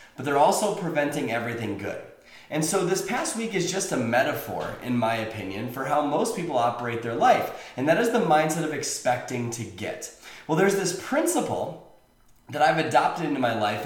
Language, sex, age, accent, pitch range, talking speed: English, male, 30-49, American, 125-175 Hz, 190 wpm